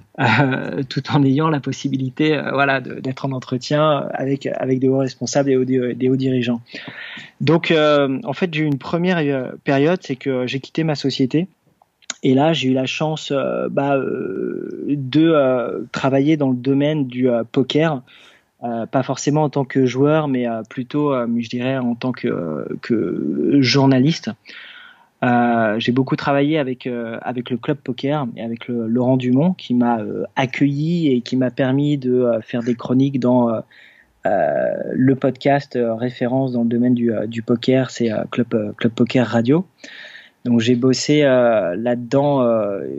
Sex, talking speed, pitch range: male, 180 wpm, 120-145 Hz